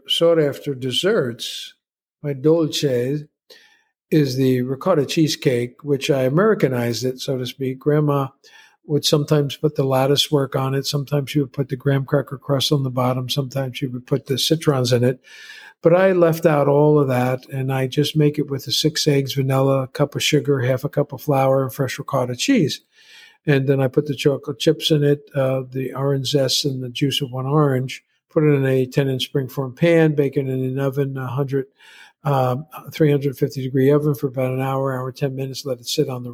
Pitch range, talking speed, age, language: 130-150 Hz, 200 wpm, 50-69, English